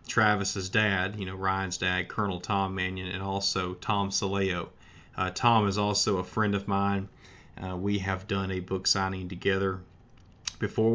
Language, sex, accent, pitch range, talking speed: English, male, American, 95-115 Hz, 165 wpm